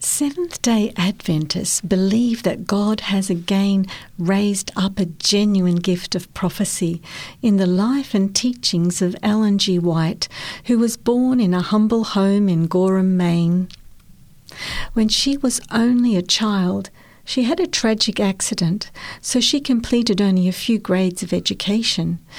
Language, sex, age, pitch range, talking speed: English, female, 60-79, 180-225 Hz, 140 wpm